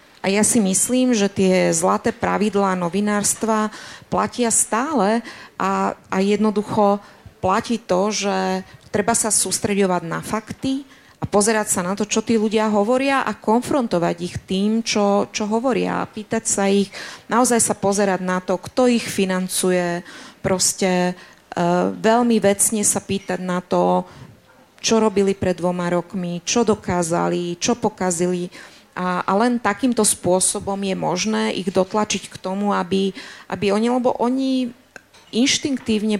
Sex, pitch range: female, 185-225 Hz